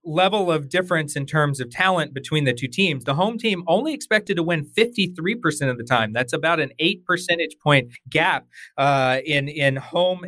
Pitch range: 125-170 Hz